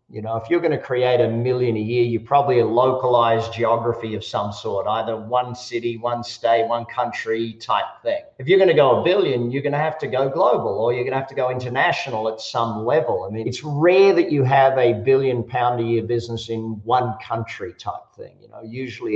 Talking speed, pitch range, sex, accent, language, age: 230 wpm, 115-140 Hz, male, Australian, English, 50-69